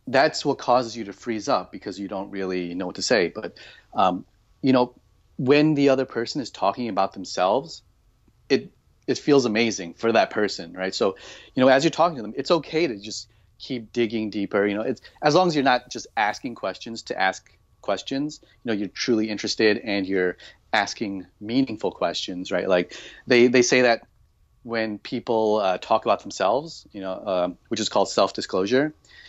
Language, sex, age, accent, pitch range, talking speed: English, male, 30-49, American, 100-125 Hz, 190 wpm